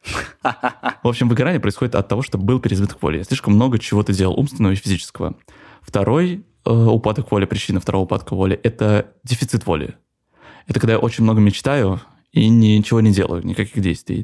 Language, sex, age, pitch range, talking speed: Russian, male, 20-39, 95-120 Hz, 175 wpm